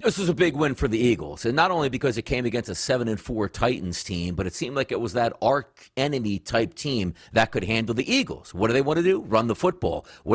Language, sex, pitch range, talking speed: English, male, 130-195 Hz, 260 wpm